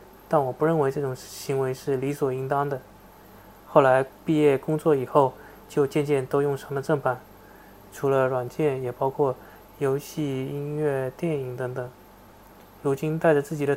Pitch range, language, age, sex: 130-155 Hz, Chinese, 20-39, male